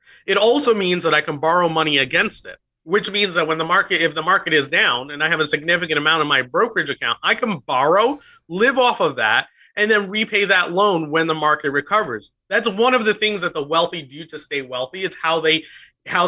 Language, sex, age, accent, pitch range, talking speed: English, male, 30-49, American, 150-195 Hz, 230 wpm